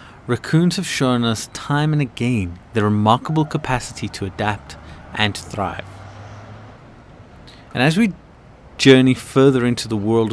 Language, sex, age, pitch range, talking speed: English, male, 30-49, 105-135 Hz, 135 wpm